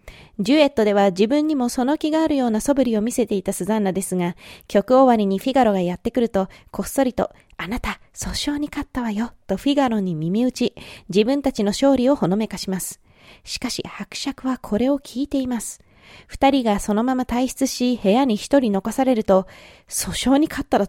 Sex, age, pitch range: female, 20-39, 205-265 Hz